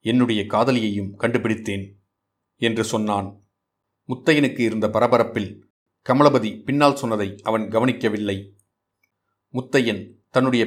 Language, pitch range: Tamil, 105-125 Hz